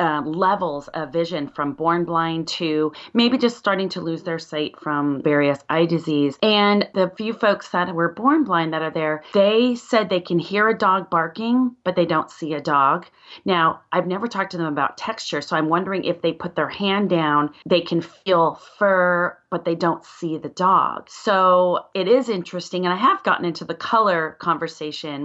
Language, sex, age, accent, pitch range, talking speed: English, female, 30-49, American, 160-205 Hz, 195 wpm